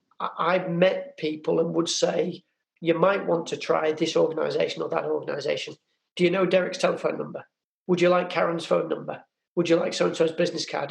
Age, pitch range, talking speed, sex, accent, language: 40-59, 165-210 Hz, 185 wpm, male, British, English